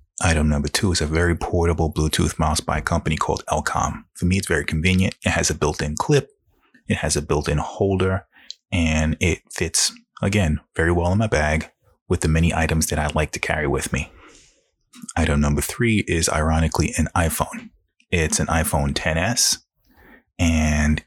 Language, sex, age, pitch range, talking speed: English, male, 30-49, 75-90 Hz, 175 wpm